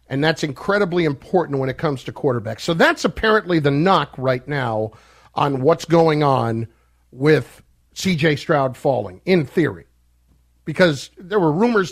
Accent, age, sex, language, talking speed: American, 50-69, male, English, 150 wpm